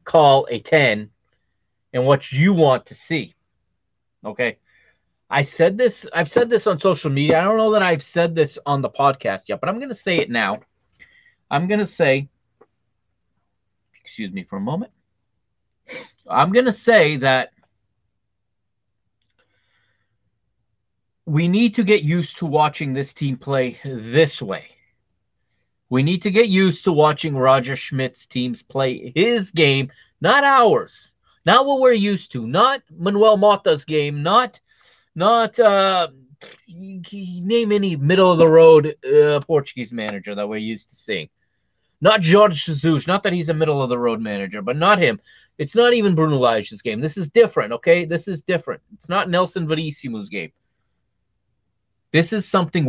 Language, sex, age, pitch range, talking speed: English, male, 30-49, 115-185 Hz, 150 wpm